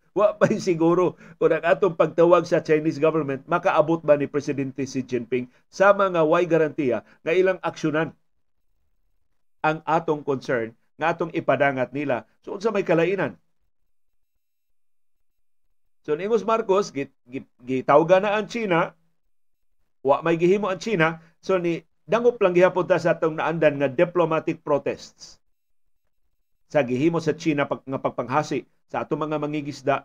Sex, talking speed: male, 140 wpm